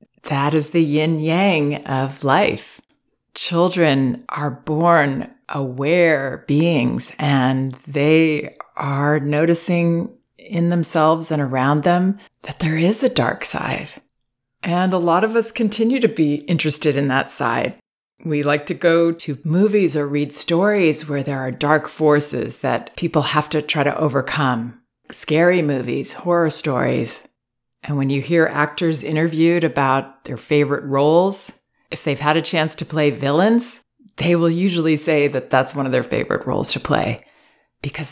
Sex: female